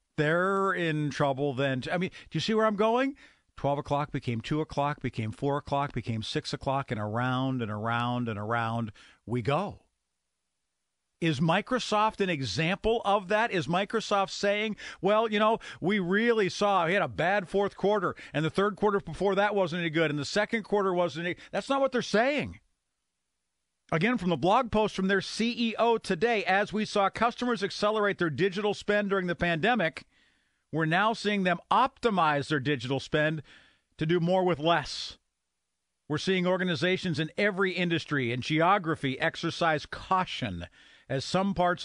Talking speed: 170 wpm